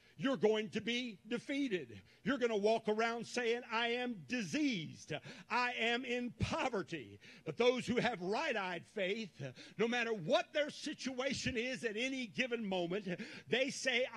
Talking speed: 150 wpm